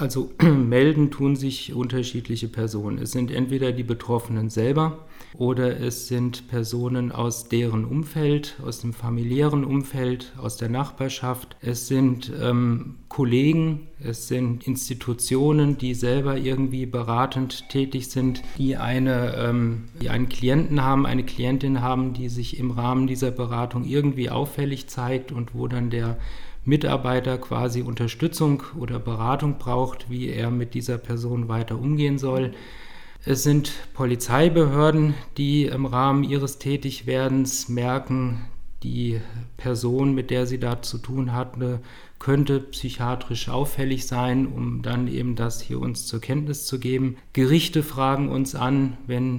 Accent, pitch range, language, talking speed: German, 120-135 Hz, German, 135 wpm